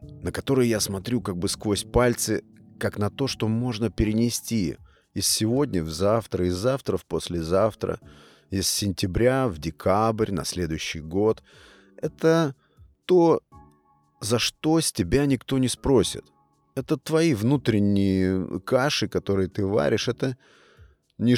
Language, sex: Russian, male